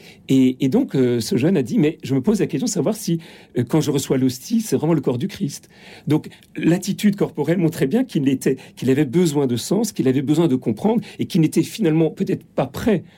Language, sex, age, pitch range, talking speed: French, male, 40-59, 125-195 Hz, 235 wpm